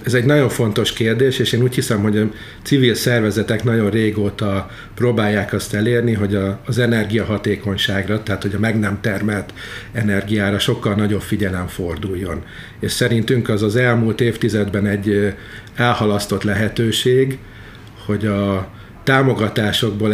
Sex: male